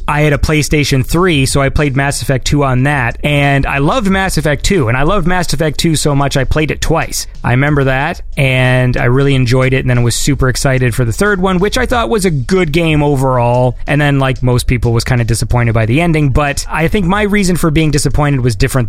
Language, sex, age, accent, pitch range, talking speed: English, male, 30-49, American, 135-180 Hz, 250 wpm